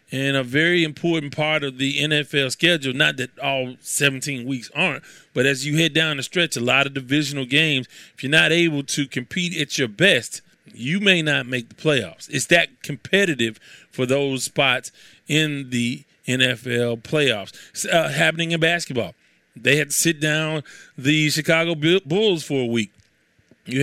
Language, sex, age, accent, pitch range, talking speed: English, male, 30-49, American, 135-170 Hz, 170 wpm